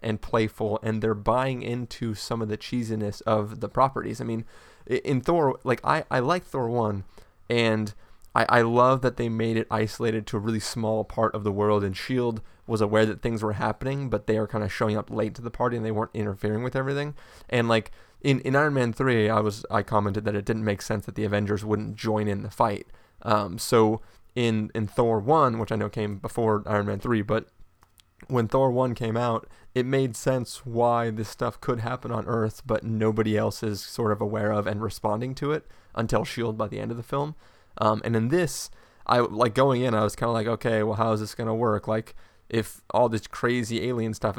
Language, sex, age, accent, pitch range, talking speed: English, male, 20-39, American, 105-120 Hz, 225 wpm